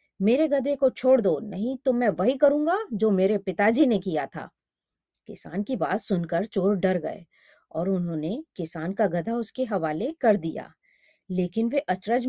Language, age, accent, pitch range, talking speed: Hindi, 30-49, native, 190-250 Hz, 170 wpm